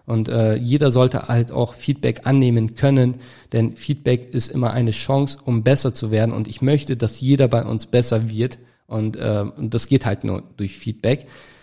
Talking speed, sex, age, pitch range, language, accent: 190 wpm, male, 40-59, 115-140 Hz, German, German